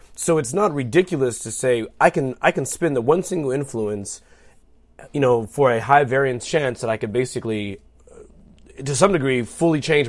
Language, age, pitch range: English, 30-49, 110-135 Hz